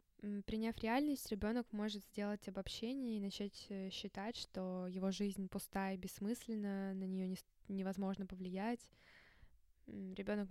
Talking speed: 115 wpm